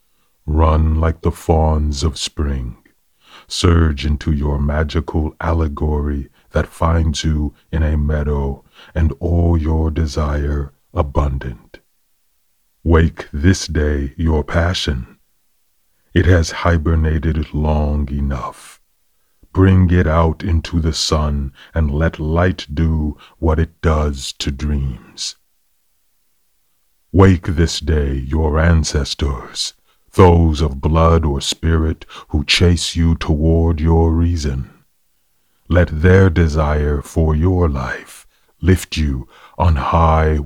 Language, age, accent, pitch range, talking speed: English, 40-59, American, 75-85 Hz, 110 wpm